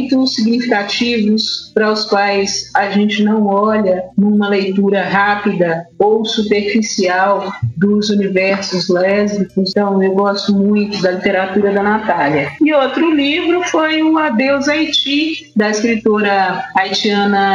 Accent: Brazilian